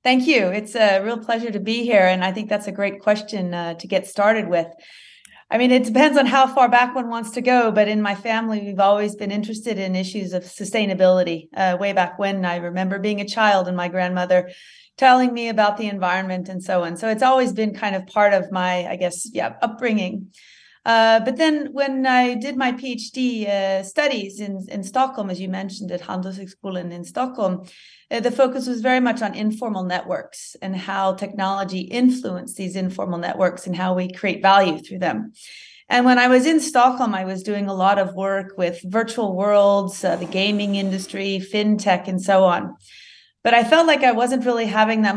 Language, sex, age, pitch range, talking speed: English, female, 30-49, 185-235 Hz, 205 wpm